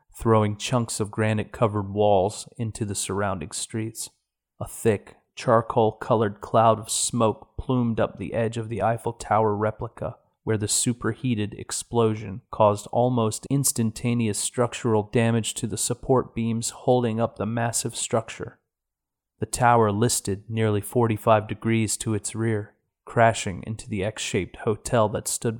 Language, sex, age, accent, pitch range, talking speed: English, male, 30-49, American, 105-120 Hz, 135 wpm